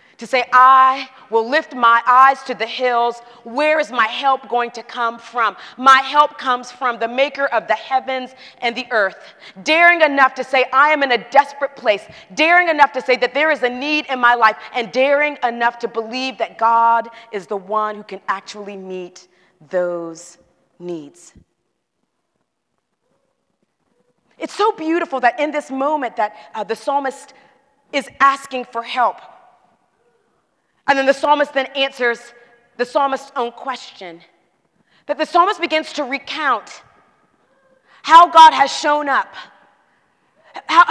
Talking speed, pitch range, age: 155 wpm, 235-290 Hz, 30-49